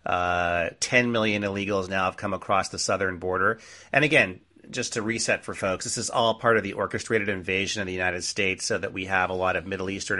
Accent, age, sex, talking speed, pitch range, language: American, 30-49, male, 230 wpm, 95-115 Hz, English